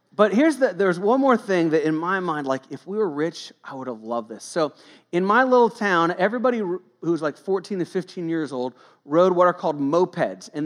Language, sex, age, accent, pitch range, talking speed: English, male, 40-59, American, 145-200 Hz, 225 wpm